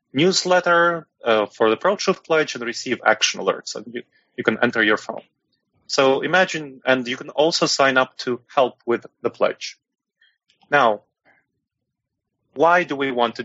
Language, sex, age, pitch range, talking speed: English, male, 30-49, 120-155 Hz, 165 wpm